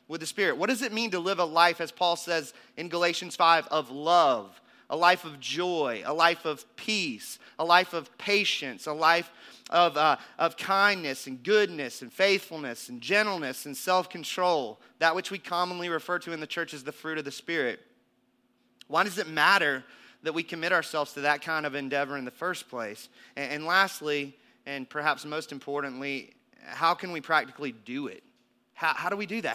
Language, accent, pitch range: English, American, 150-185 Hz